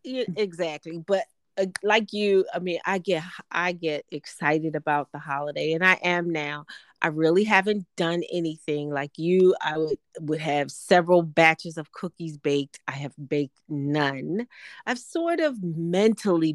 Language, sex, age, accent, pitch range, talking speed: English, female, 30-49, American, 145-190 Hz, 160 wpm